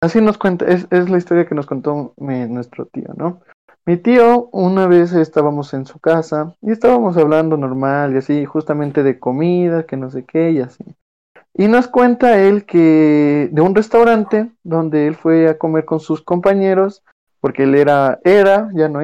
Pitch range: 145-190 Hz